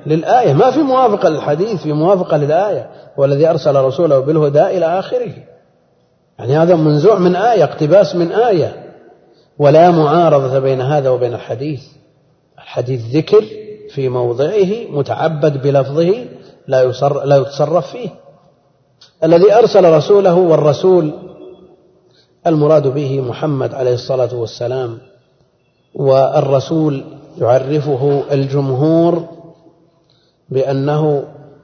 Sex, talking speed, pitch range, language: male, 100 wpm, 130-160 Hz, Arabic